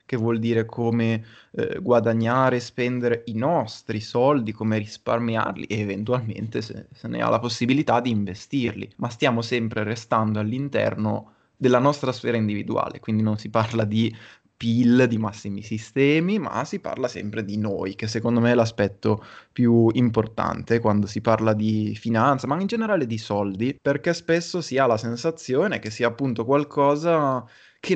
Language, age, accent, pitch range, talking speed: Italian, 20-39, native, 110-130 Hz, 160 wpm